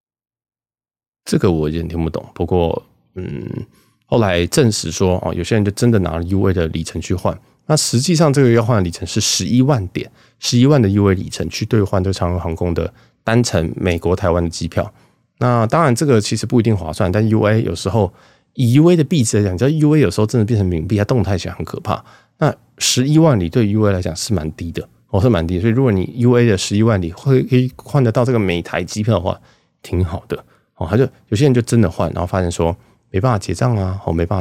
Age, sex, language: 20-39, male, Chinese